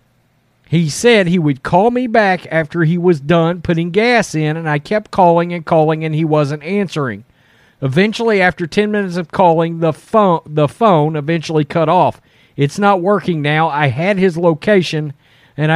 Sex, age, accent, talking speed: male, 40-59, American, 170 wpm